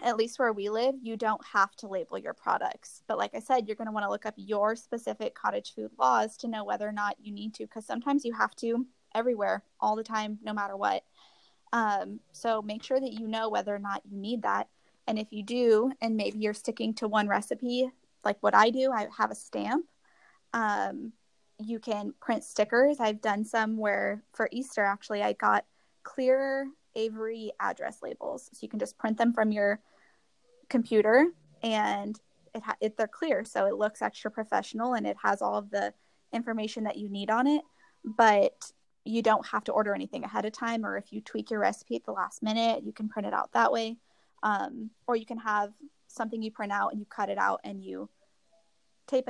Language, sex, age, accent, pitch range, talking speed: English, female, 10-29, American, 210-235 Hz, 210 wpm